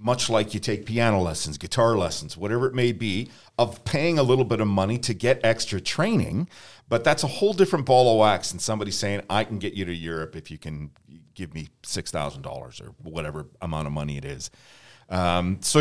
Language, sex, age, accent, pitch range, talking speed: English, male, 40-59, American, 105-130 Hz, 210 wpm